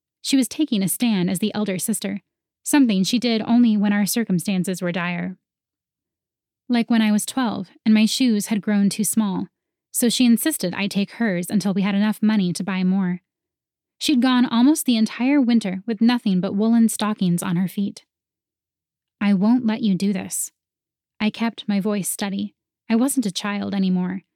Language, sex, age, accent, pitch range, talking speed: English, female, 10-29, American, 195-240 Hz, 180 wpm